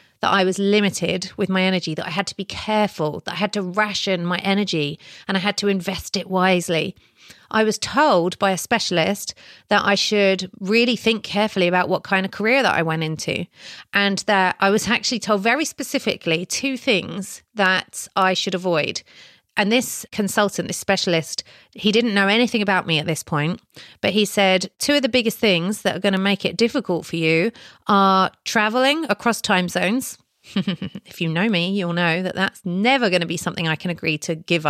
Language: English